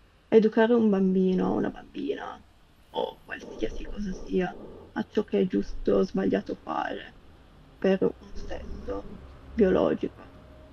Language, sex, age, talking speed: Italian, female, 30-49, 125 wpm